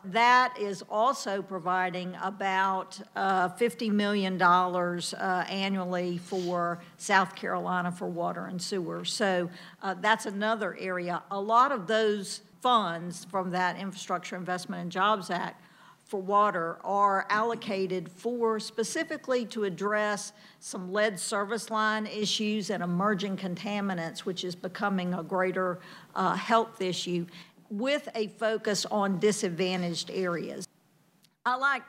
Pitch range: 180-215 Hz